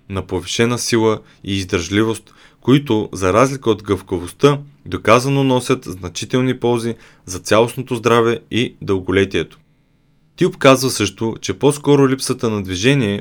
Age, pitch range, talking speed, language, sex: 30-49, 100-135 Hz, 125 wpm, Bulgarian, male